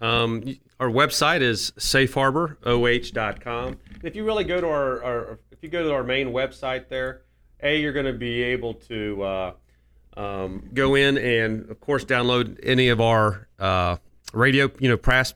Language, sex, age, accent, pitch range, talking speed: English, male, 30-49, American, 115-140 Hz, 165 wpm